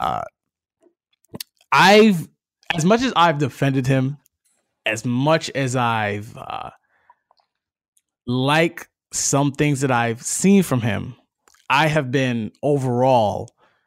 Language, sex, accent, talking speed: English, male, American, 110 wpm